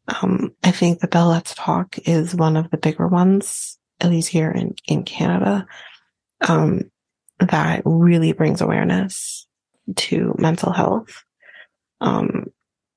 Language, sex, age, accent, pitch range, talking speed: English, female, 20-39, American, 170-195 Hz, 130 wpm